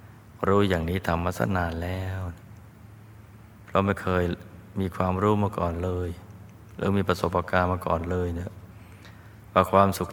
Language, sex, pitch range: Thai, male, 95-105 Hz